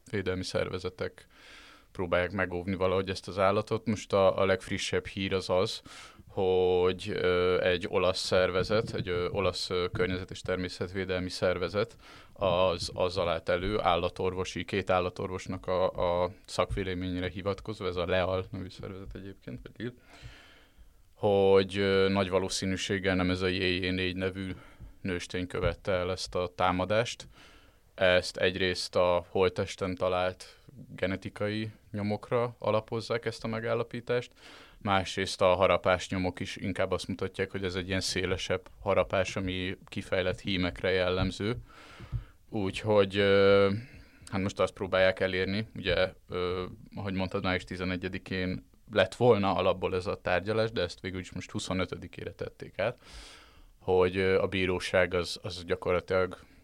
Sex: male